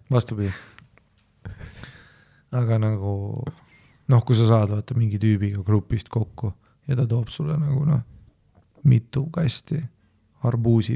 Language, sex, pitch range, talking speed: English, male, 105-140 Hz, 115 wpm